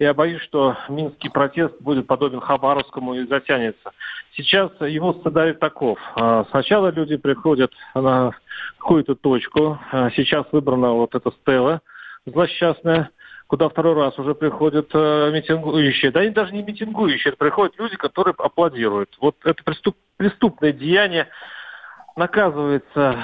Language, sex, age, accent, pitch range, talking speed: Russian, male, 40-59, native, 140-185 Hz, 125 wpm